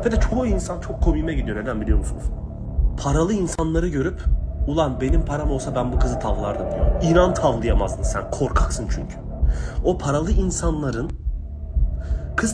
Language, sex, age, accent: Japanese, male, 30-49, Turkish